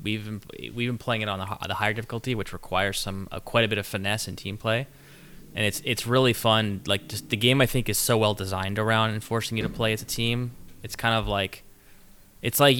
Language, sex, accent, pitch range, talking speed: English, male, American, 100-115 Hz, 245 wpm